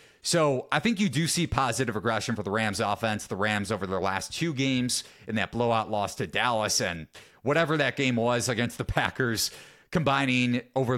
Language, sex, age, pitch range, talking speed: English, male, 30-49, 110-140 Hz, 190 wpm